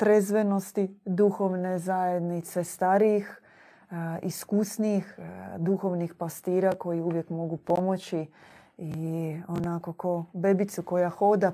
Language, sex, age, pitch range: Croatian, female, 20-39, 175-200 Hz